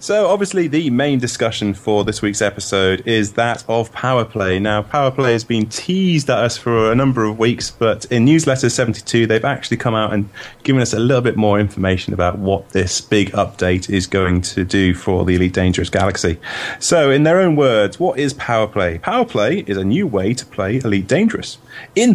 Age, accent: 30-49, British